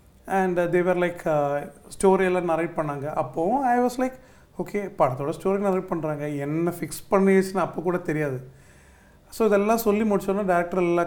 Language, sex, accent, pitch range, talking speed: Tamil, male, native, 145-180 Hz, 175 wpm